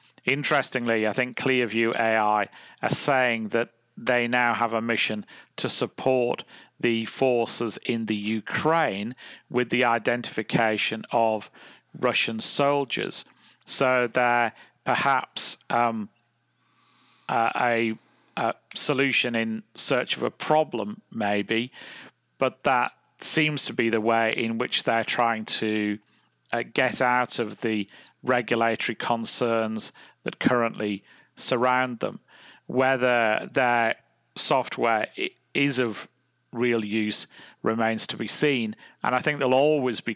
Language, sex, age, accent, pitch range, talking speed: English, male, 40-59, British, 110-125 Hz, 120 wpm